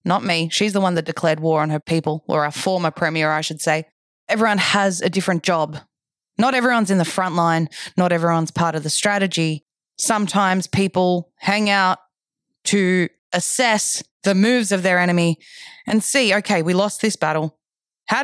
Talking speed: 180 wpm